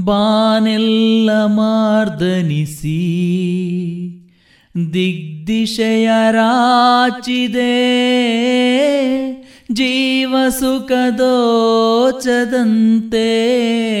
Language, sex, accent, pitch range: Kannada, male, native, 215-255 Hz